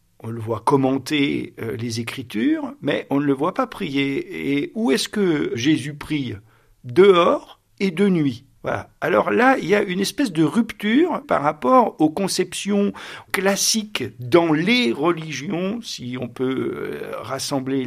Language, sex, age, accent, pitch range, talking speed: French, male, 50-69, French, 130-190 Hz, 150 wpm